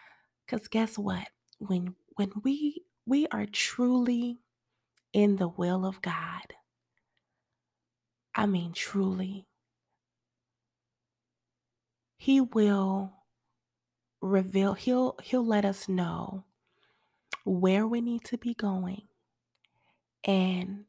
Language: English